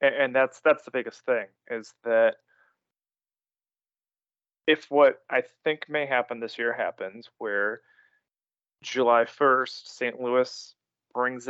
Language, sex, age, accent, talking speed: English, male, 20-39, American, 120 wpm